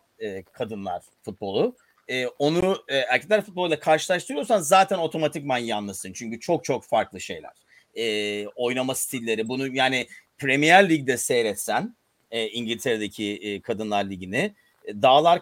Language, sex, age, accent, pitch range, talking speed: Turkish, male, 40-59, native, 125-200 Hz, 95 wpm